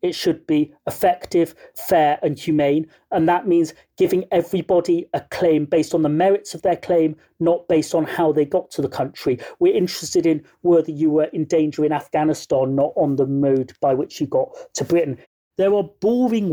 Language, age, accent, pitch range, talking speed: English, 40-59, British, 155-200 Hz, 190 wpm